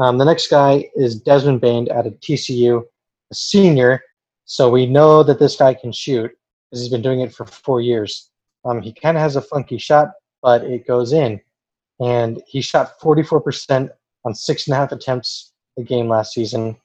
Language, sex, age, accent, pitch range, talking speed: English, male, 20-39, American, 120-140 Hz, 190 wpm